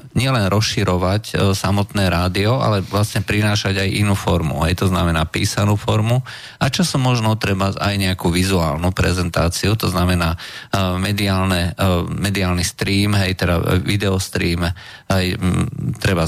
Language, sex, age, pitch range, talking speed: Slovak, male, 40-59, 95-110 Hz, 135 wpm